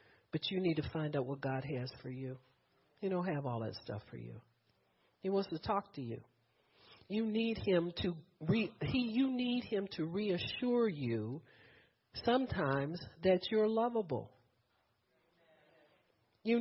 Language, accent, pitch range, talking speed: English, American, 140-215 Hz, 150 wpm